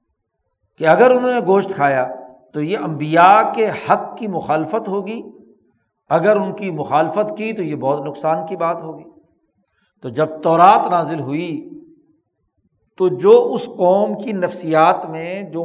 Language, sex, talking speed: Urdu, male, 150 wpm